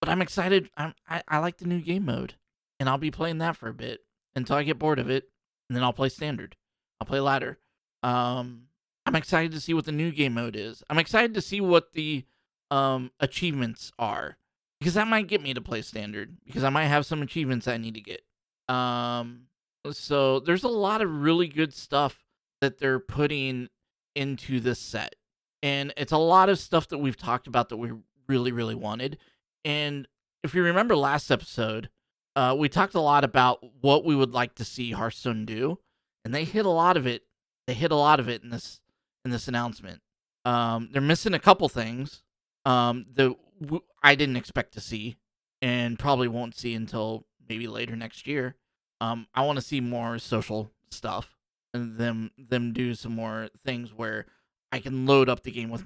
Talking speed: 200 wpm